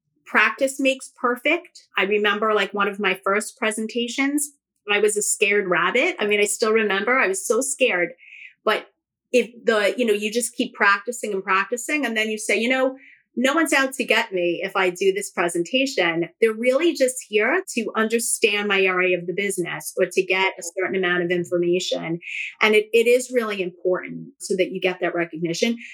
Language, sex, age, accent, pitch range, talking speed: English, female, 30-49, American, 190-250 Hz, 195 wpm